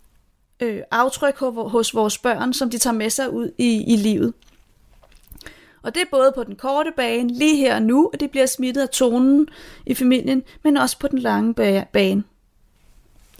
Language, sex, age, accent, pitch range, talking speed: Danish, female, 30-49, native, 235-280 Hz, 175 wpm